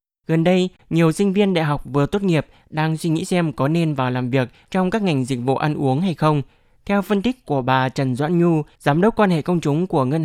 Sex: male